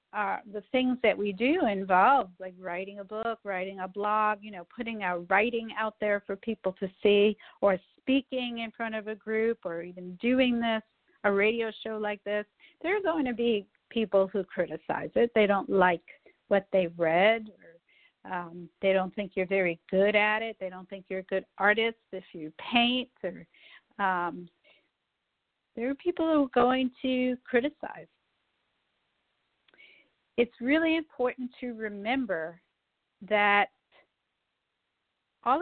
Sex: female